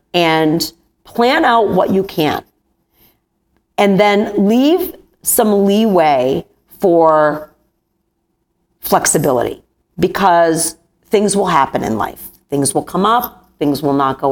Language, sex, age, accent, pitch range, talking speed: English, female, 40-59, American, 160-215 Hz, 115 wpm